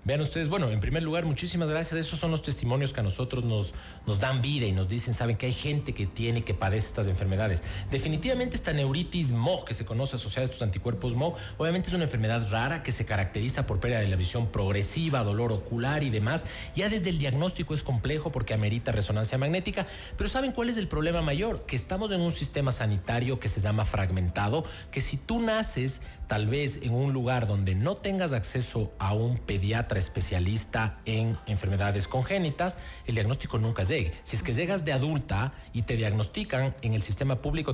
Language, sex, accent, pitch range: Spanish, male, Mexican, 105-155 Hz